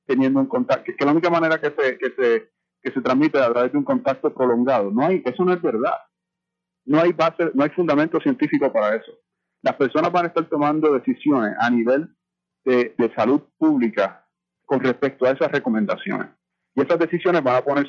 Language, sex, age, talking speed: English, male, 30-49, 205 wpm